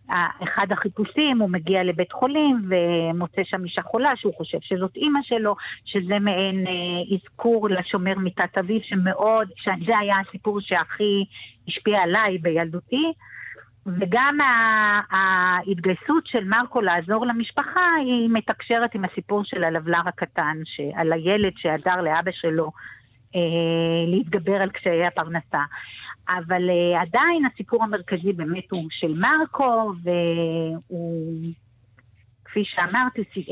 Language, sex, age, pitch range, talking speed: Hebrew, female, 50-69, 175-220 Hz, 115 wpm